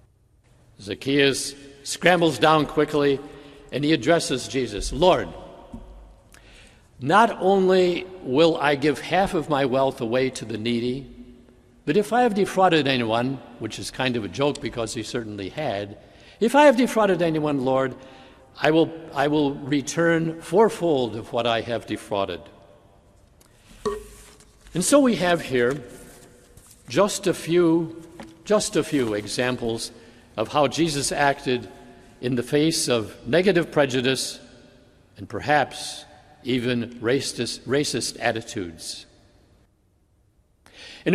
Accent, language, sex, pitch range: American, English, male, 120-160 Hz